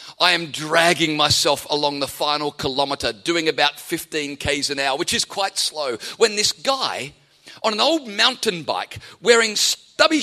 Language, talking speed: English, 165 wpm